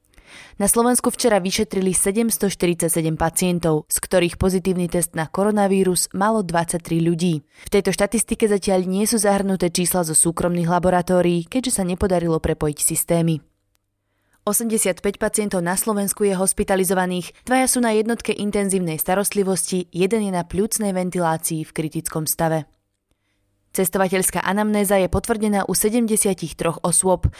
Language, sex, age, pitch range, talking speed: Slovak, female, 20-39, 170-205 Hz, 125 wpm